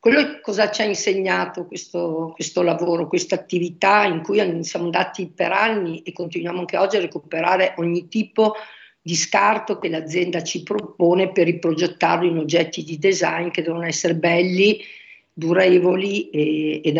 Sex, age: female, 50-69